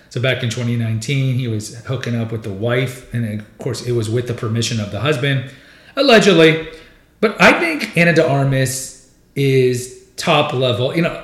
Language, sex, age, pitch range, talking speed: English, male, 40-59, 115-140 Hz, 180 wpm